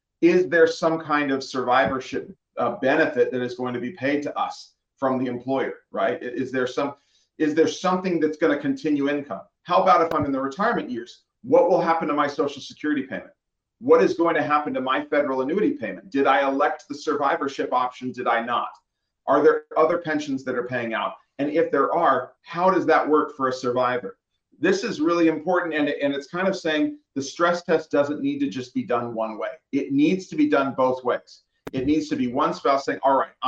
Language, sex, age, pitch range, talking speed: English, male, 40-59, 130-170 Hz, 220 wpm